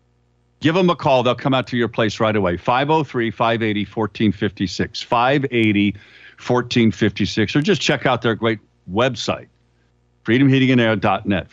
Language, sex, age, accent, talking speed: English, male, 50-69, American, 115 wpm